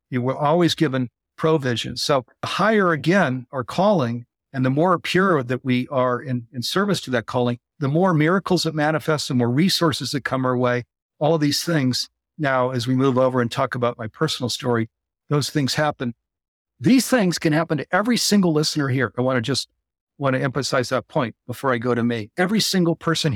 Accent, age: American, 50-69